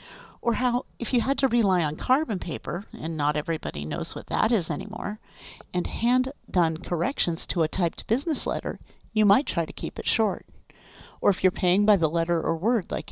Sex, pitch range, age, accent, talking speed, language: female, 160-210 Hz, 50-69, American, 195 wpm, English